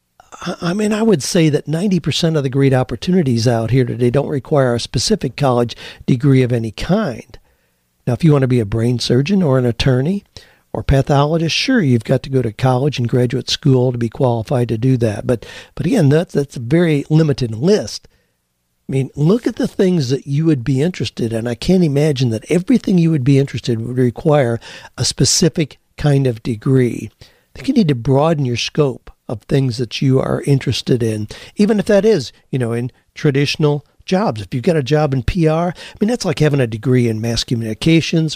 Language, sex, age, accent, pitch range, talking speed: English, male, 60-79, American, 120-155 Hz, 205 wpm